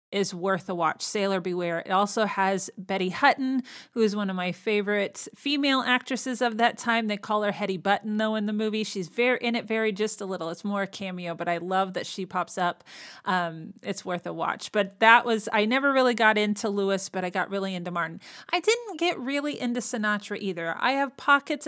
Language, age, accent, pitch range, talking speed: English, 30-49, American, 195-245 Hz, 220 wpm